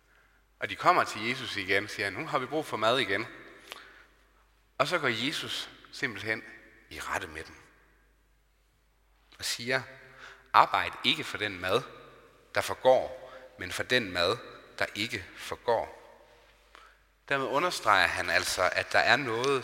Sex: male